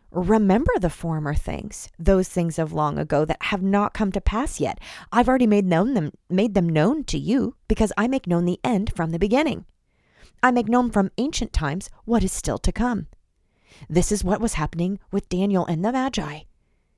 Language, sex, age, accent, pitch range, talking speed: English, female, 30-49, American, 170-230 Hz, 200 wpm